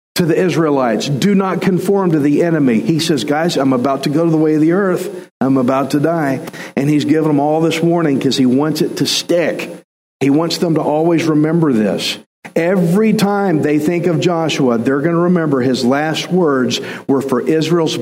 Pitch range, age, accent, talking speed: 140-180 Hz, 50-69, American, 205 wpm